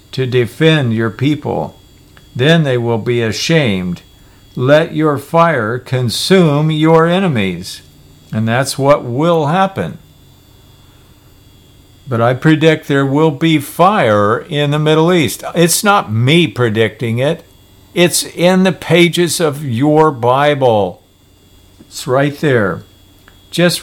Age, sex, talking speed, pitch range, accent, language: 50-69, male, 120 wpm, 100-155 Hz, American, English